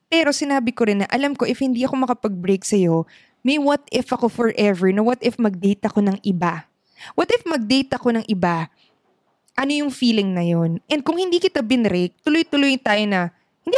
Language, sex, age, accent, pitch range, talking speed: Filipino, female, 20-39, native, 200-270 Hz, 205 wpm